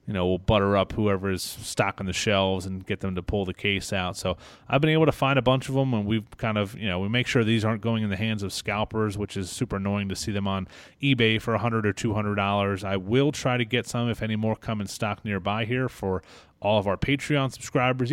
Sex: male